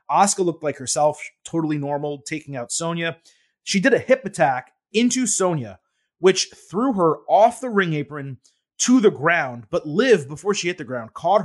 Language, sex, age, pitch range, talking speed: English, male, 30-49, 150-200 Hz, 180 wpm